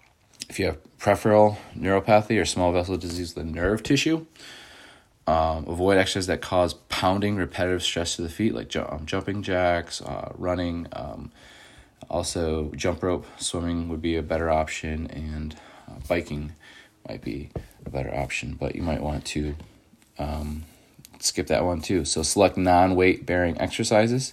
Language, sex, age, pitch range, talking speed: English, male, 20-39, 80-95 Hz, 155 wpm